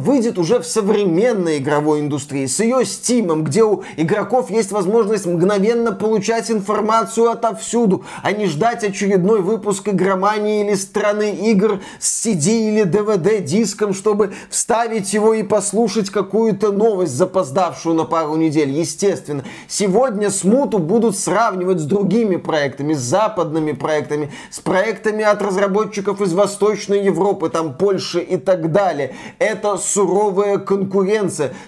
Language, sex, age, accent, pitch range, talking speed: Russian, male, 20-39, native, 180-225 Hz, 130 wpm